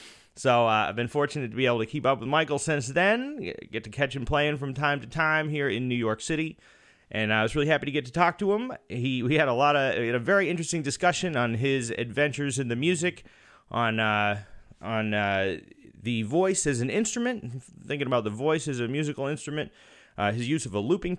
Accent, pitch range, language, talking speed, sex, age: American, 110-155 Hz, English, 225 wpm, male, 30-49